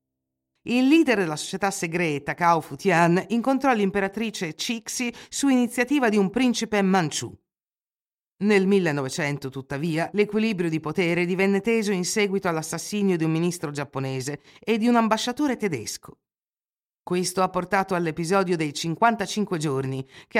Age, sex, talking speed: 50-69, female, 130 wpm